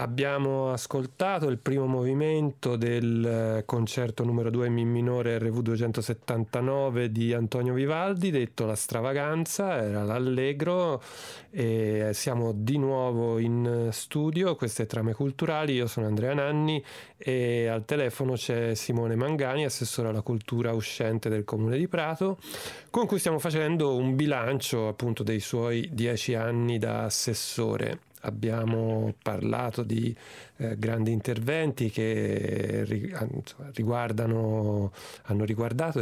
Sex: male